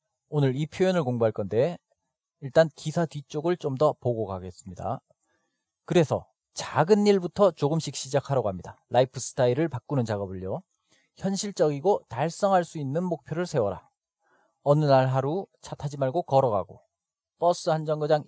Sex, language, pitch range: male, Korean, 120-165 Hz